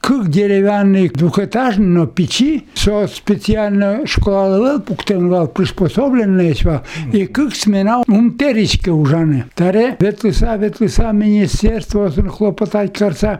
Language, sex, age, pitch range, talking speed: Russian, male, 60-79, 190-230 Hz, 60 wpm